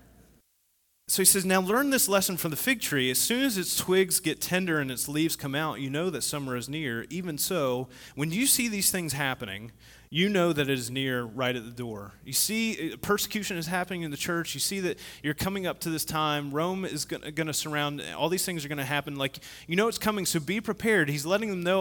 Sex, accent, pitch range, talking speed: male, American, 135-185 Hz, 240 wpm